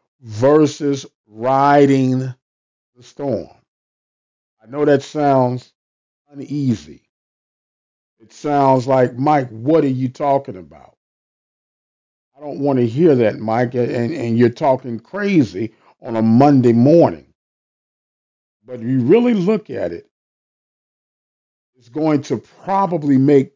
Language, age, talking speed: English, 50-69, 115 wpm